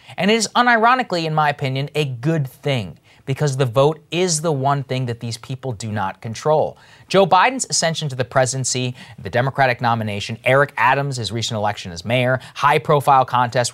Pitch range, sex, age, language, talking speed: 120-170 Hz, male, 30-49, English, 175 wpm